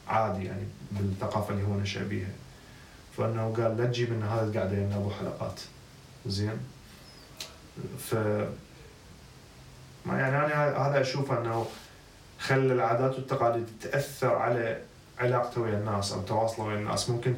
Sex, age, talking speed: male, 20-39, 130 wpm